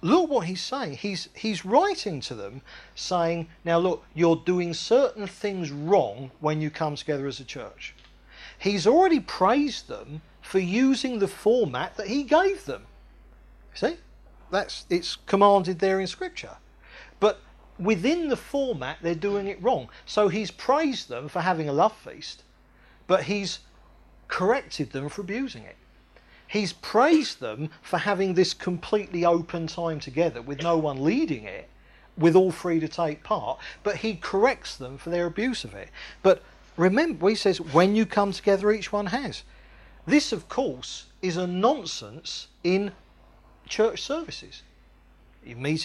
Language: English